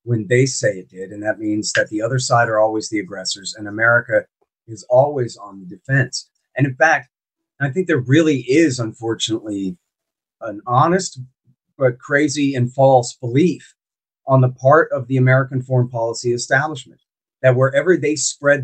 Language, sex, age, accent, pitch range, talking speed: English, male, 30-49, American, 125-160 Hz, 165 wpm